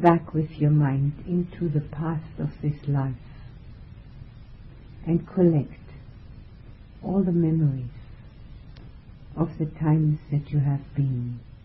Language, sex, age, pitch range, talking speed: English, female, 60-79, 115-155 Hz, 115 wpm